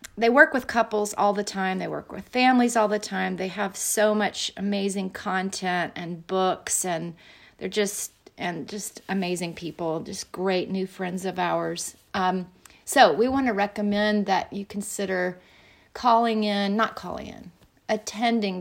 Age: 40-59